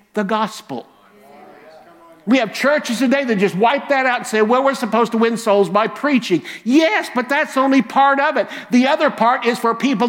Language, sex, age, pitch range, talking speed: English, male, 50-69, 165-235 Hz, 200 wpm